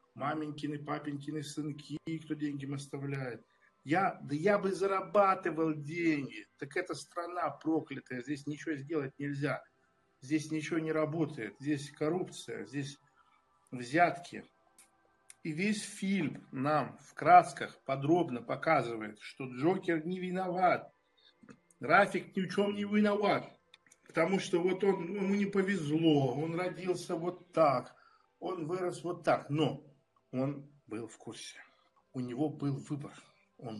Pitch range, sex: 145-185 Hz, male